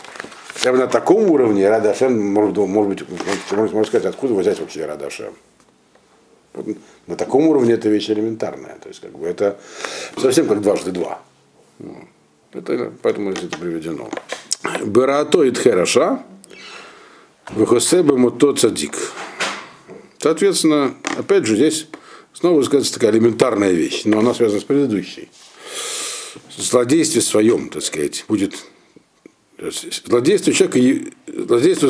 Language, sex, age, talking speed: Russian, male, 50-69, 110 wpm